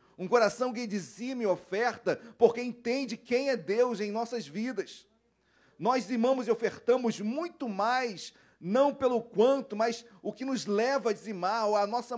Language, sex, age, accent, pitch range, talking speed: Portuguese, male, 40-59, Brazilian, 190-240 Hz, 165 wpm